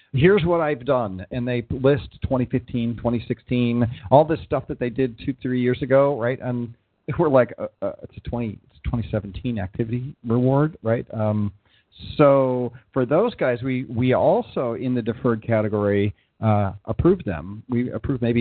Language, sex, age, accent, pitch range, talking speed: English, male, 40-59, American, 110-130 Hz, 160 wpm